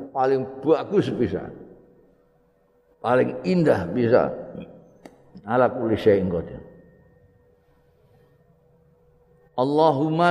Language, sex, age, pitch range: Indonesian, male, 50-69, 95-135 Hz